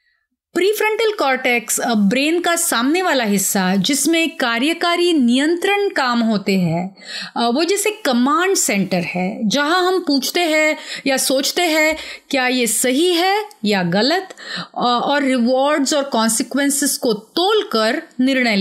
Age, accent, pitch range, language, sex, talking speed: 30-49, native, 215-330 Hz, Hindi, female, 125 wpm